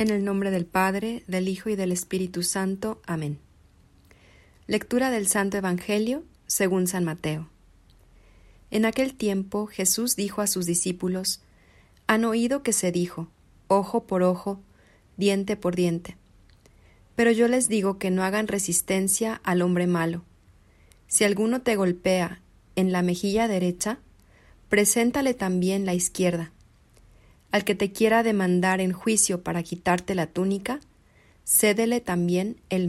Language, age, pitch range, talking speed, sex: Spanish, 40-59, 175-210 Hz, 135 wpm, female